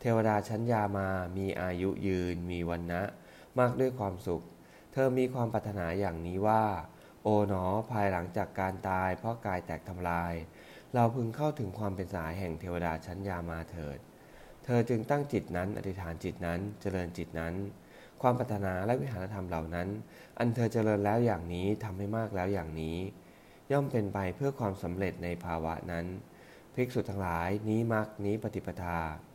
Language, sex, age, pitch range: English, male, 20-39, 90-110 Hz